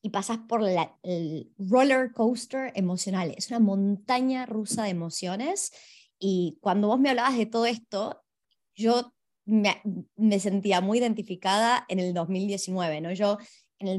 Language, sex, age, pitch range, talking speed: Spanish, male, 20-39, 185-230 Hz, 150 wpm